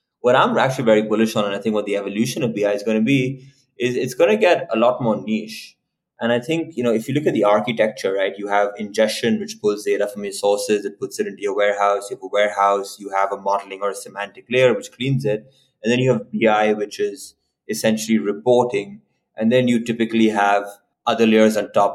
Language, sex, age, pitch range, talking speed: English, male, 20-39, 105-135 Hz, 240 wpm